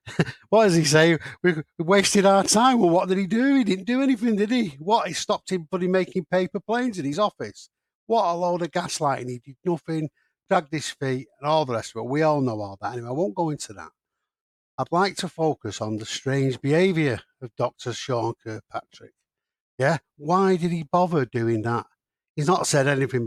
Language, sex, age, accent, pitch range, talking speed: English, male, 60-79, British, 135-185 Hz, 210 wpm